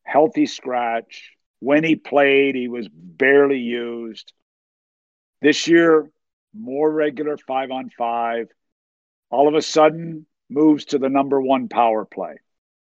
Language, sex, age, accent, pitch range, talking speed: English, male, 50-69, American, 110-145 Hz, 125 wpm